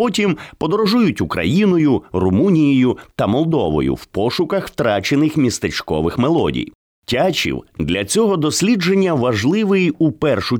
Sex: male